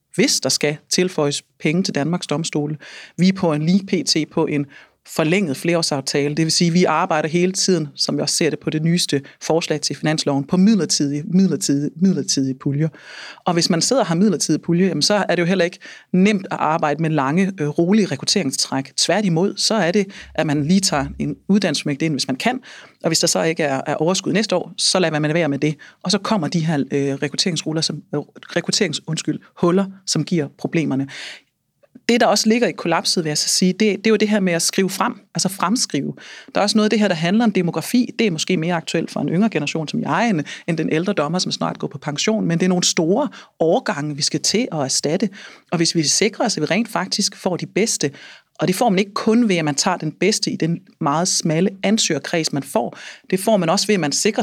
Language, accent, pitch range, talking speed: Danish, native, 155-200 Hz, 225 wpm